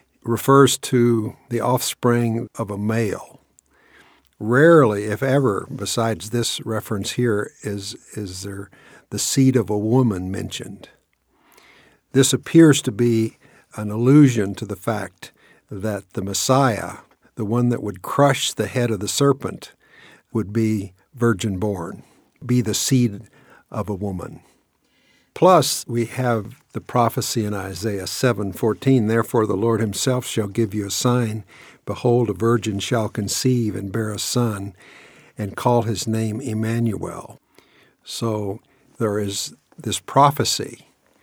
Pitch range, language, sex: 105-120 Hz, English, male